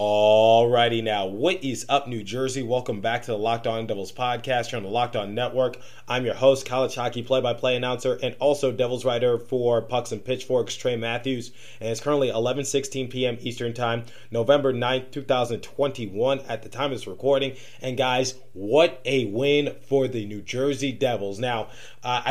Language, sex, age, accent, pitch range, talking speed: English, male, 30-49, American, 120-140 Hz, 180 wpm